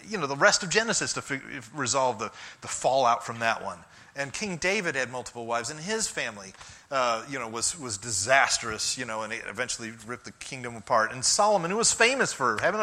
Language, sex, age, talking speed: English, male, 30-49, 210 wpm